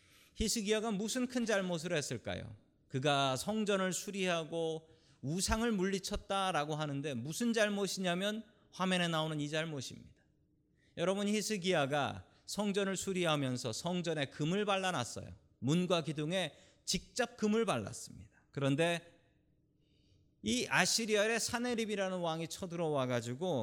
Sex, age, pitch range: male, 40-59, 130-195 Hz